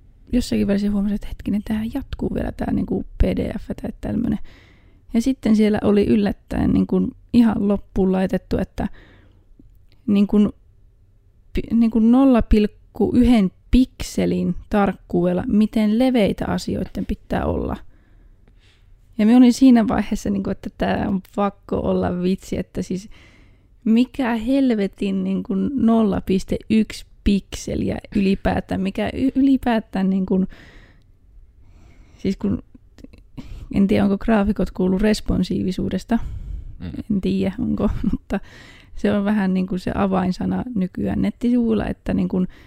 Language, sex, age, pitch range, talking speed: Finnish, female, 20-39, 185-225 Hz, 120 wpm